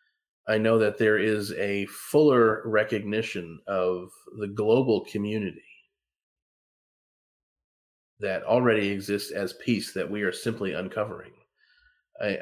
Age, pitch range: 40-59, 100-120 Hz